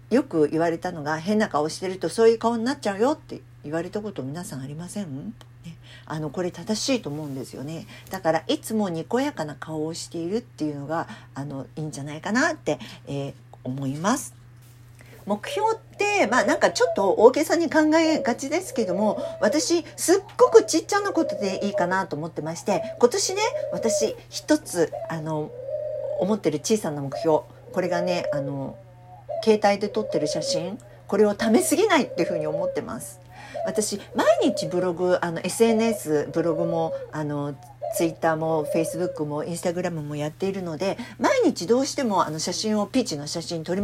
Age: 50-69